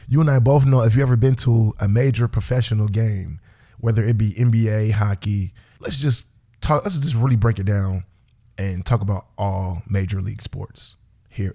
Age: 20-39